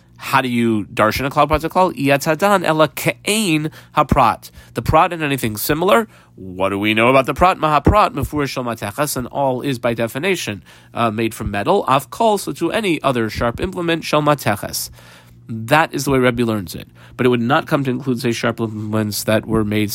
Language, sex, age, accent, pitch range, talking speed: English, male, 30-49, American, 110-150 Hz, 175 wpm